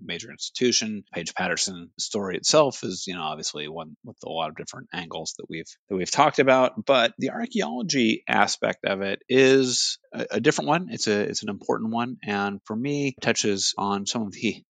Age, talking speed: 30-49, 200 wpm